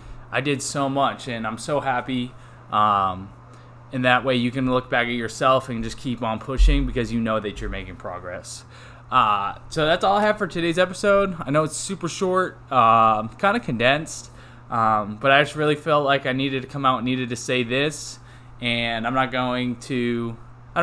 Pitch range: 120-150 Hz